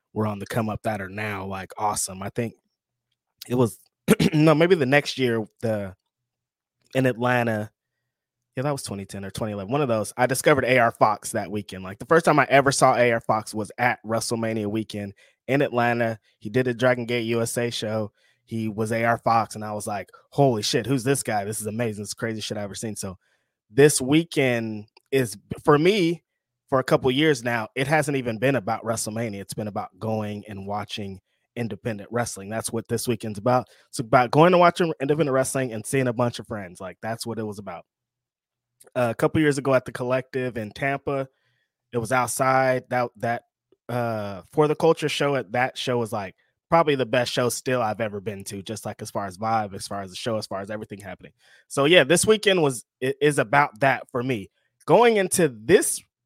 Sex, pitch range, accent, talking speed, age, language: male, 110-130 Hz, American, 210 wpm, 20-39, English